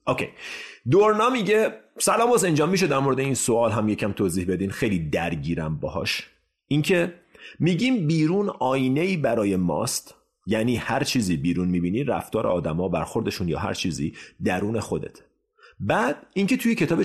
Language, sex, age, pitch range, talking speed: Persian, male, 30-49, 85-130 Hz, 150 wpm